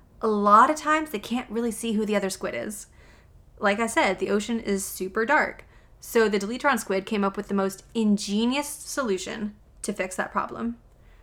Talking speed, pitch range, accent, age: 195 wpm, 195-235 Hz, American, 20-39